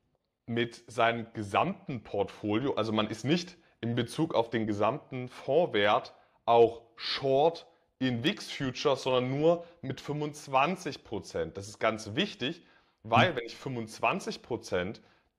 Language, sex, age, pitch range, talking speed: German, male, 30-49, 115-150 Hz, 120 wpm